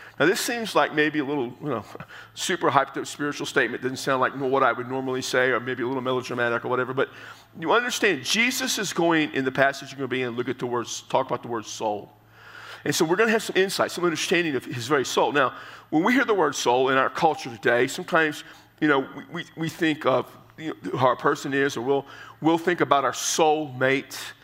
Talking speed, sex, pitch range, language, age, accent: 240 wpm, male, 130-165 Hz, English, 50-69, American